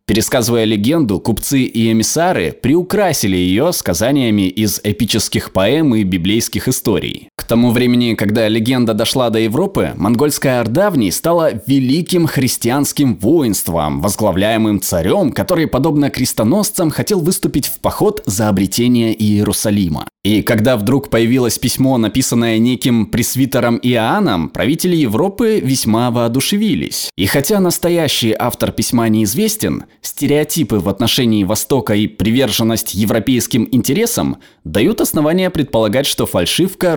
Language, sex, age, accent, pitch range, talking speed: Russian, male, 20-39, native, 110-145 Hz, 115 wpm